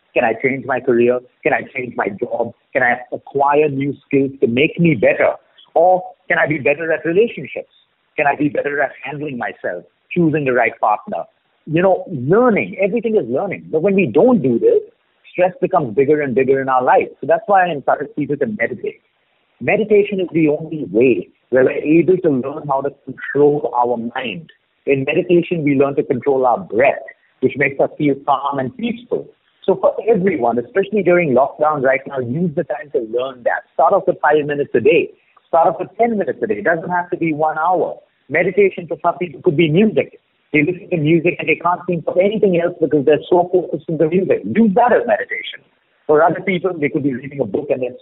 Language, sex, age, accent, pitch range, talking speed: Hindi, male, 50-69, native, 145-185 Hz, 215 wpm